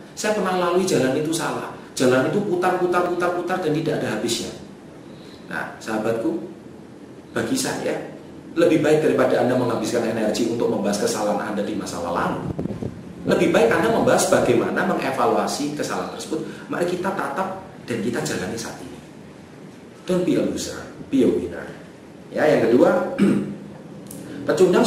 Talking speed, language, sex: 140 wpm, Indonesian, male